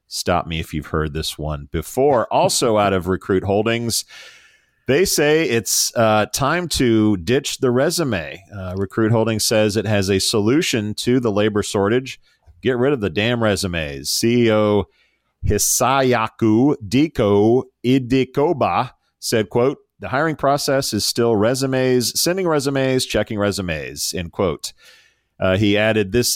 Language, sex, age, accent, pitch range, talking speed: English, male, 40-59, American, 100-130 Hz, 140 wpm